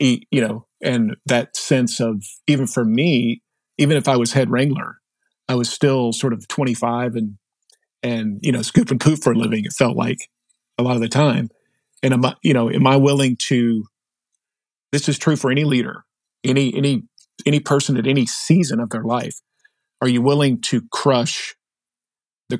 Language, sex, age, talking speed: English, male, 40-59, 185 wpm